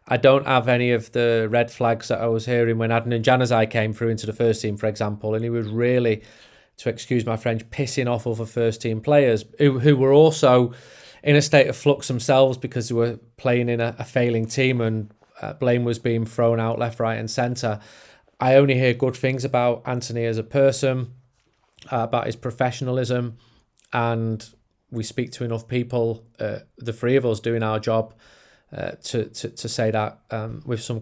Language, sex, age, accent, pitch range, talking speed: English, male, 30-49, British, 115-125 Hz, 200 wpm